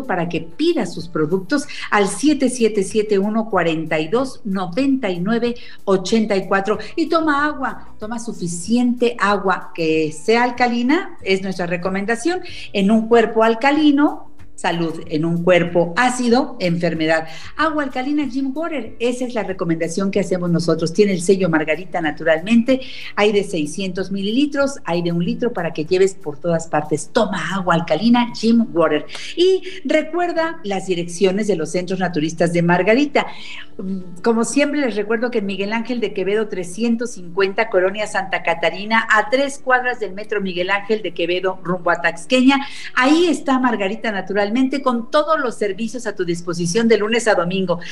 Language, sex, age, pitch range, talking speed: Spanish, female, 50-69, 180-255 Hz, 145 wpm